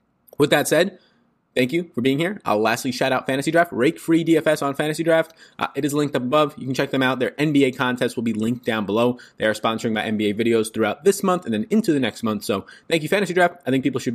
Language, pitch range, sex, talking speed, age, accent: English, 105-150 Hz, male, 265 wpm, 20-39, American